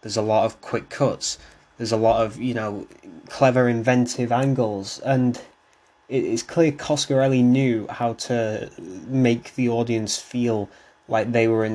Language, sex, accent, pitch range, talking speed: English, male, British, 110-125 Hz, 155 wpm